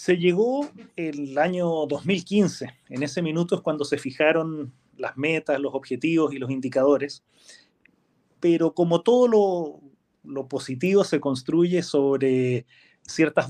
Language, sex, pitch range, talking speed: Spanish, male, 135-170 Hz, 130 wpm